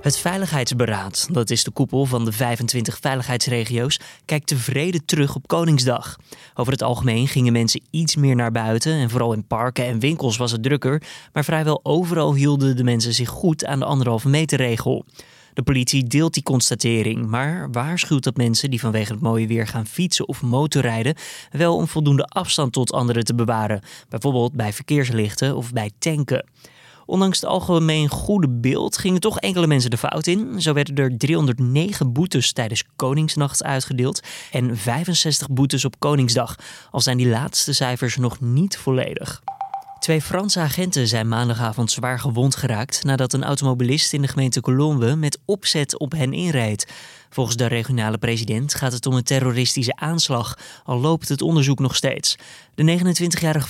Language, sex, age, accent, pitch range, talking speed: Dutch, male, 20-39, Dutch, 120-155 Hz, 165 wpm